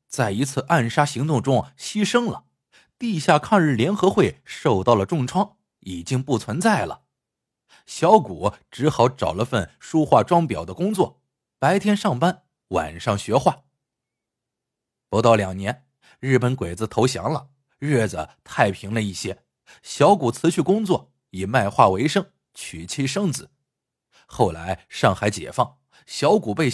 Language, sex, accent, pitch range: Chinese, male, native, 110-170 Hz